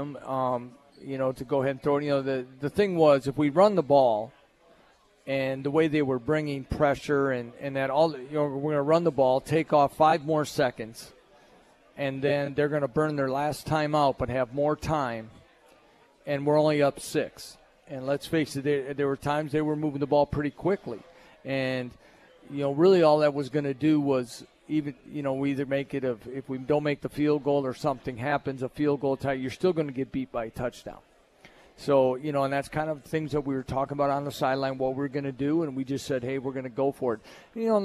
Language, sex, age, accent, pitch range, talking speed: English, male, 40-59, American, 135-150 Hz, 245 wpm